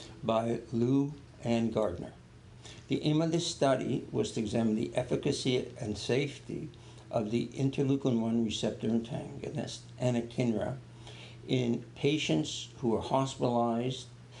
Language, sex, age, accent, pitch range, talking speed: English, male, 60-79, American, 115-130 Hz, 115 wpm